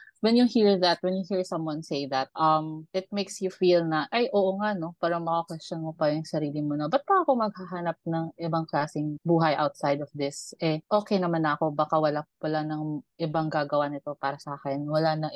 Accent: native